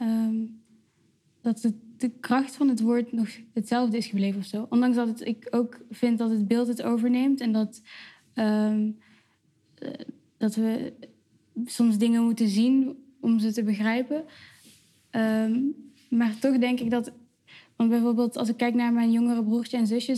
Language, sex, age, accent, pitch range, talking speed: Dutch, female, 10-29, Dutch, 225-245 Hz, 165 wpm